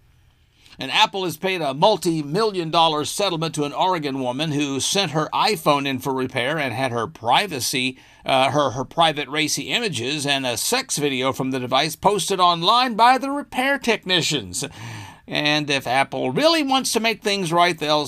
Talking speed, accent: 175 wpm, American